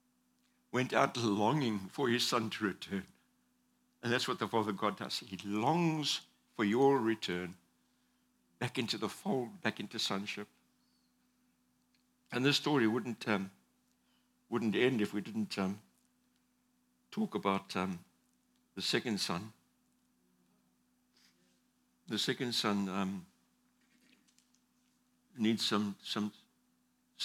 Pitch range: 85-140 Hz